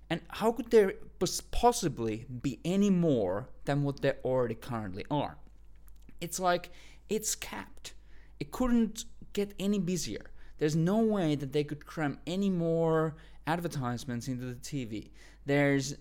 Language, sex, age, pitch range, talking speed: English, male, 20-39, 130-180 Hz, 140 wpm